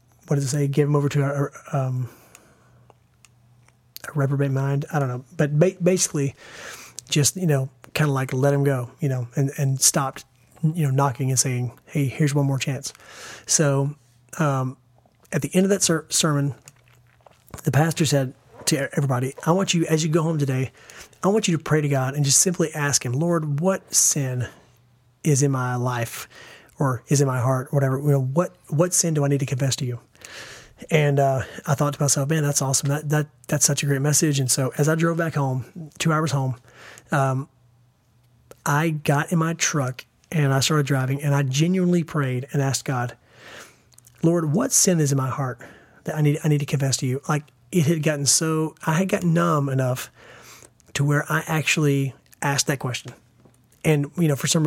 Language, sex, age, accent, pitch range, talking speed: English, male, 30-49, American, 130-155 Hz, 195 wpm